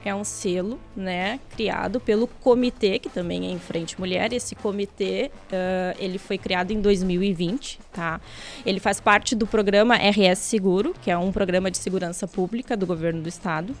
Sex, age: female, 20-39